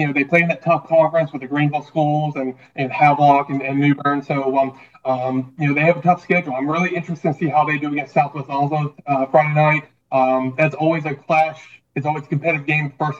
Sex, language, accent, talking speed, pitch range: male, English, American, 245 wpm, 145-175 Hz